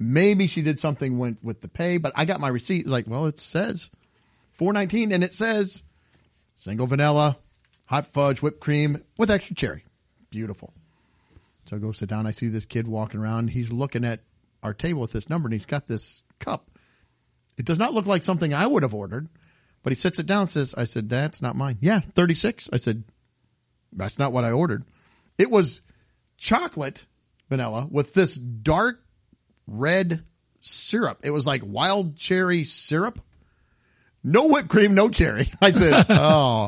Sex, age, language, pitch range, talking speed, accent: male, 40-59, English, 115-175 Hz, 175 wpm, American